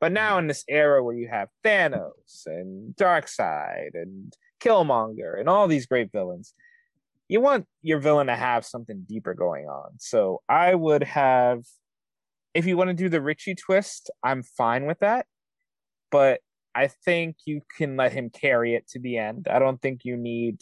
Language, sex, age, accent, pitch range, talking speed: English, male, 30-49, American, 125-185 Hz, 180 wpm